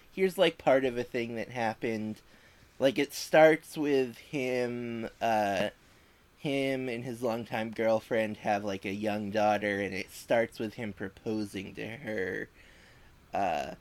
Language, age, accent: English, 20-39, American